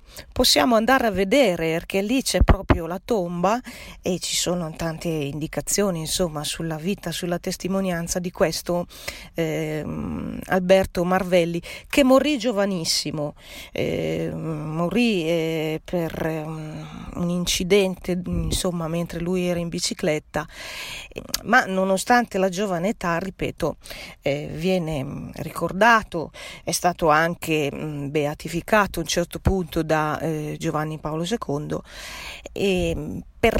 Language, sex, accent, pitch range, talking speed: Italian, female, native, 160-195 Hz, 115 wpm